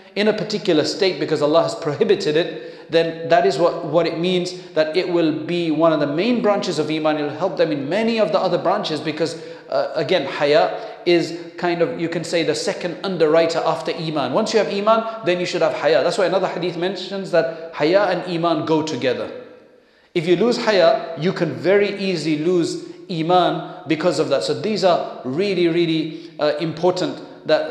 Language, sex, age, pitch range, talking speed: English, male, 40-59, 160-185 Hz, 200 wpm